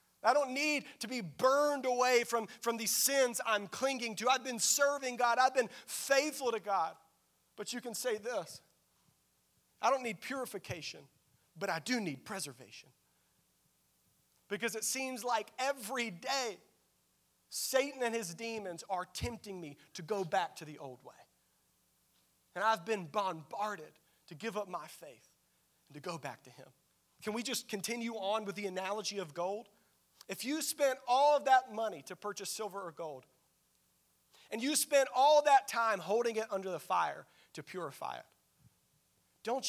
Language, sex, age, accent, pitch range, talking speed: English, male, 40-59, American, 175-245 Hz, 165 wpm